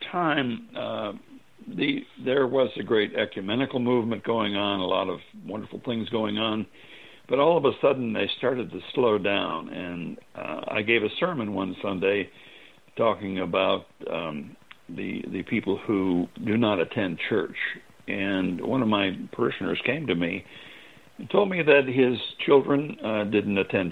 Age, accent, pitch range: 60-79, American, 100-130 Hz